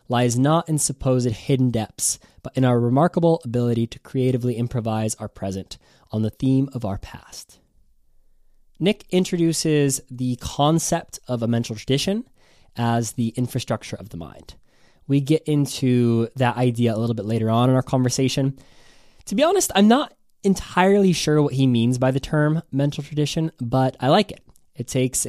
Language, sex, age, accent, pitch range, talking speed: English, male, 20-39, American, 115-155 Hz, 165 wpm